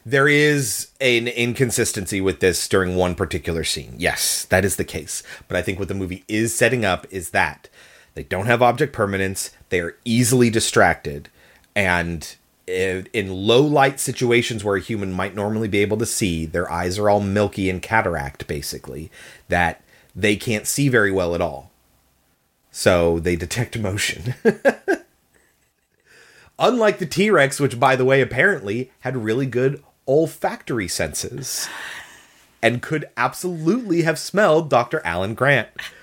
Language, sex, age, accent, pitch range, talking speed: English, male, 30-49, American, 95-130 Hz, 150 wpm